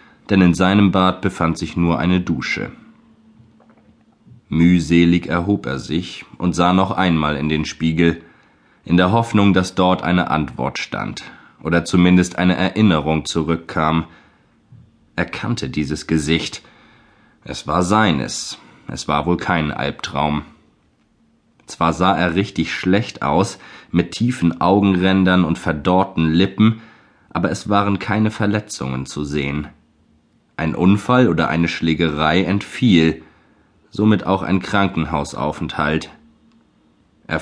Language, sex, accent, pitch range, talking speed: German, male, German, 80-100 Hz, 120 wpm